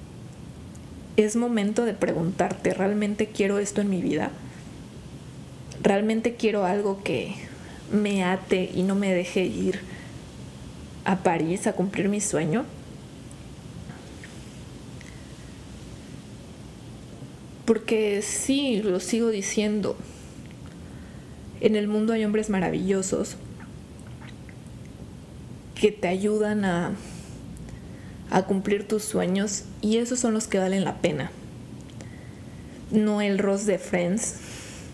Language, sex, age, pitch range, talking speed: Spanish, female, 20-39, 195-225 Hz, 100 wpm